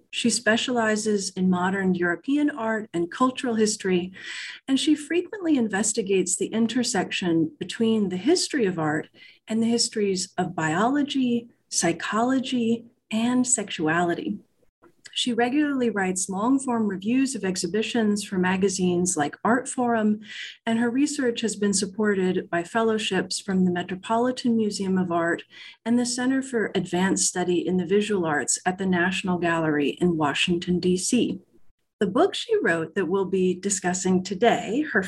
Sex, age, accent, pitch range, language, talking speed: female, 40-59, American, 185-250 Hz, English, 140 wpm